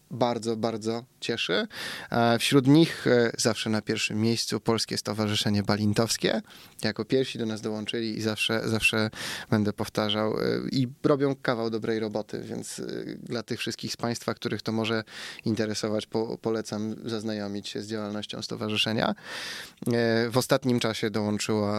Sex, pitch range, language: male, 105-115 Hz, Polish